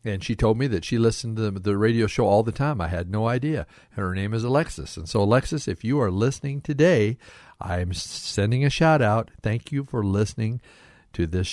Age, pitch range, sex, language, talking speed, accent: 50-69, 90-125 Hz, male, English, 210 wpm, American